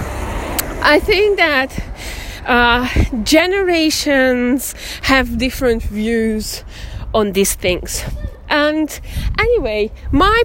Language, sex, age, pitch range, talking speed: English, female, 20-39, 240-345 Hz, 80 wpm